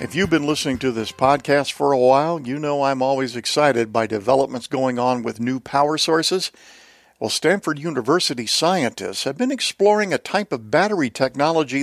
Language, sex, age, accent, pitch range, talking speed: English, male, 50-69, American, 130-185 Hz, 180 wpm